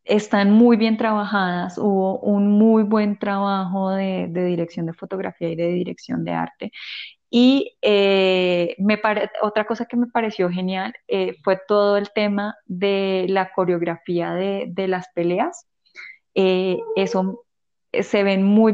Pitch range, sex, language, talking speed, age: 190-220 Hz, female, Spanish, 140 wpm, 20-39